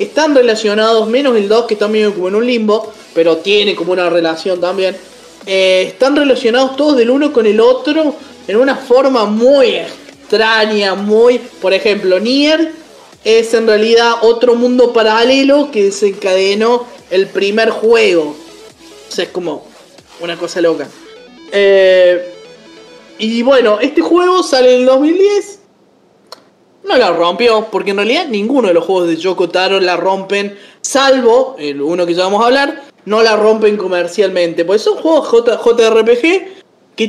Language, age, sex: Spanish, 20-39, male